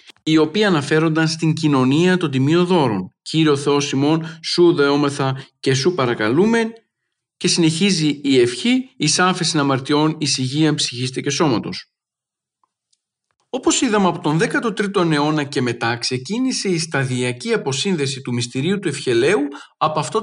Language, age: Greek, 50-69